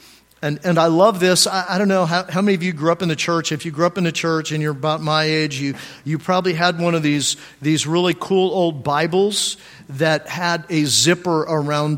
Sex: male